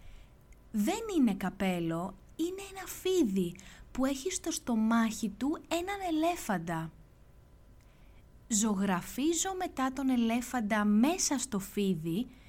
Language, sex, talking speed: Greek, female, 95 wpm